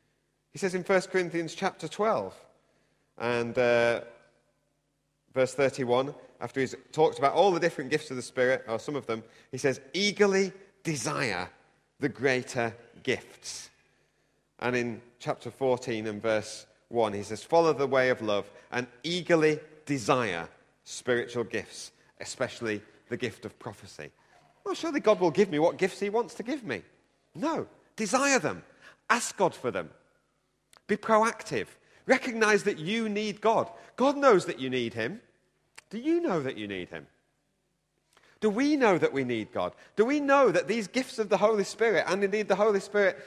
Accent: British